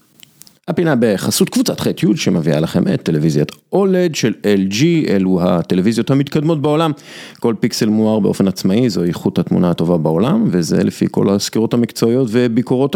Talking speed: 150 wpm